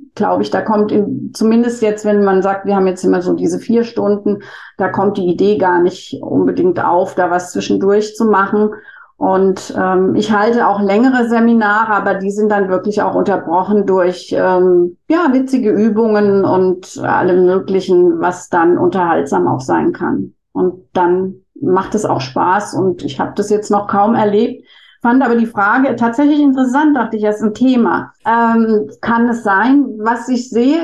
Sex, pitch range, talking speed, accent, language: female, 205-265 Hz, 180 wpm, German, German